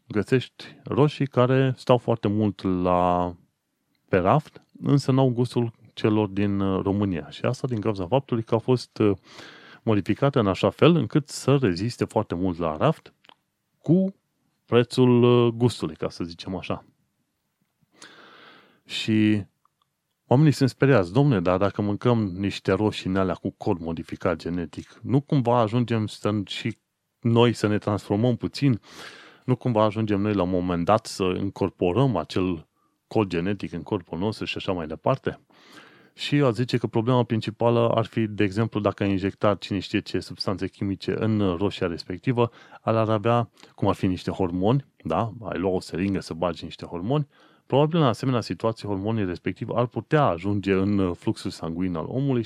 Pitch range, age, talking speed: 95-125 Hz, 30-49, 160 wpm